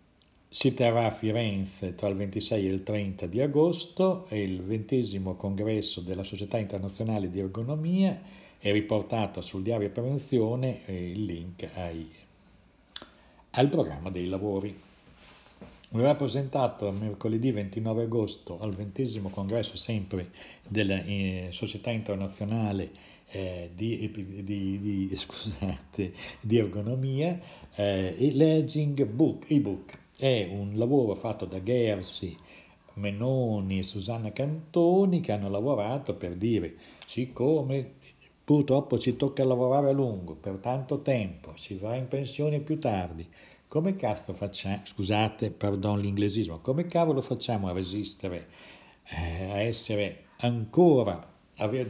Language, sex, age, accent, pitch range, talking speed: Italian, male, 60-79, native, 100-130 Hz, 120 wpm